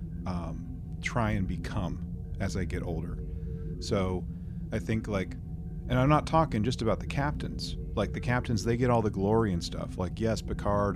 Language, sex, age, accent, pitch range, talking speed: English, male, 30-49, American, 85-105 Hz, 180 wpm